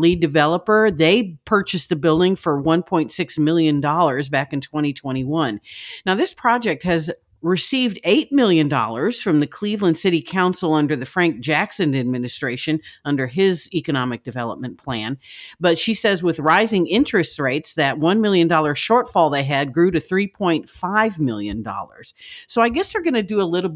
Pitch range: 150-190 Hz